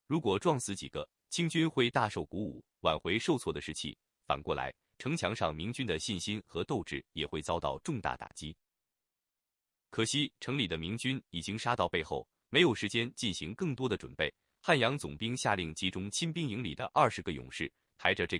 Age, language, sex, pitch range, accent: 30-49, Chinese, male, 90-145 Hz, native